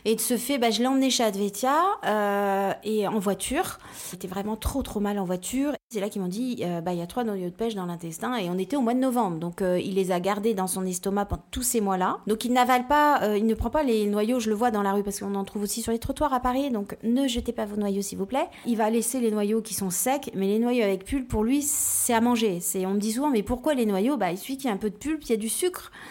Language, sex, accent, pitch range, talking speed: French, female, French, 195-245 Hz, 310 wpm